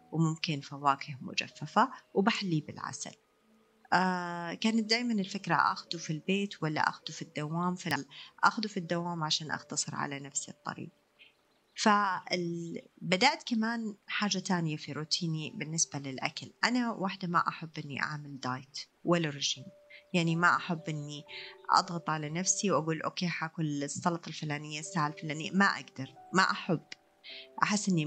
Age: 30-49